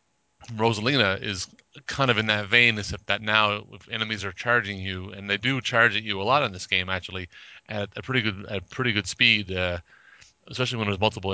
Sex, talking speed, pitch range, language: male, 210 wpm, 95-110 Hz, English